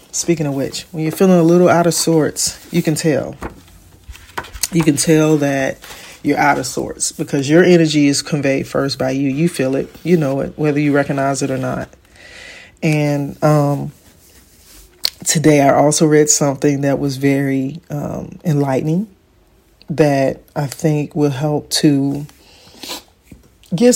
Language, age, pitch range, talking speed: English, 40-59, 135-155 Hz, 155 wpm